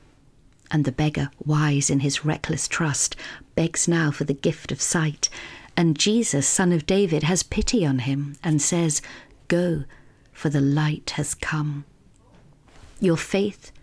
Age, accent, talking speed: 50-69, British, 150 wpm